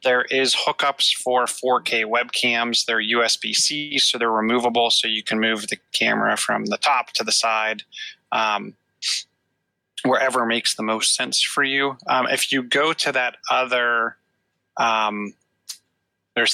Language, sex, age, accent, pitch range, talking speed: English, male, 30-49, American, 110-135 Hz, 140 wpm